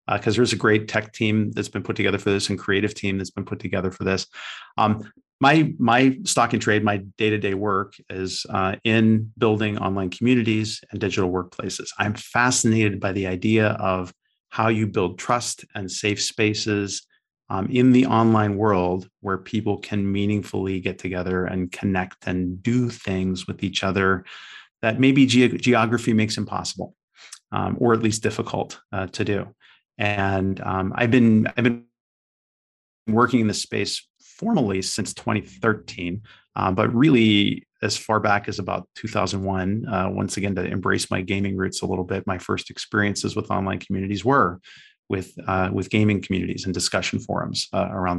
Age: 40-59